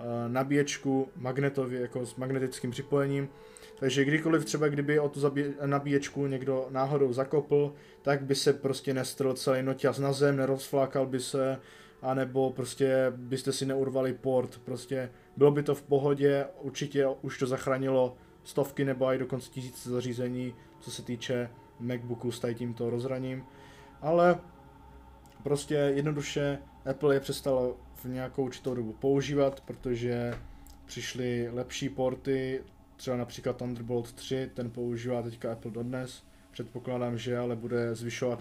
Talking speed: 135 wpm